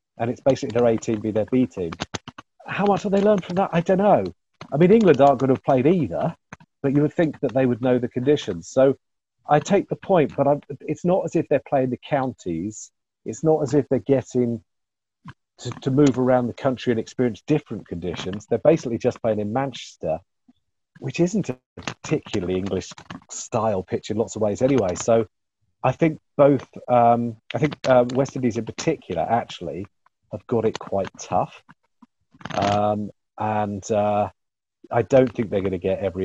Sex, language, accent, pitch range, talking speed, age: male, English, British, 105-140 Hz, 190 wpm, 40-59